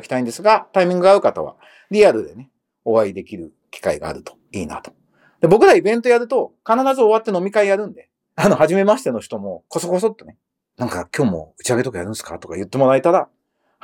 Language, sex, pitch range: Japanese, male, 130-195 Hz